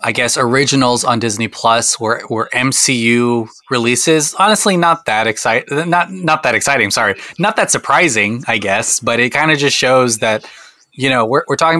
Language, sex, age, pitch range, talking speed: English, male, 20-39, 115-150 Hz, 185 wpm